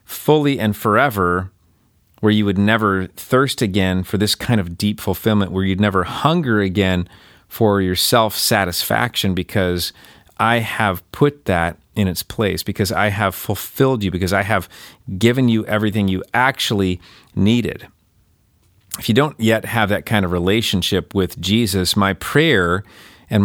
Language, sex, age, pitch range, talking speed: English, male, 40-59, 95-110 Hz, 150 wpm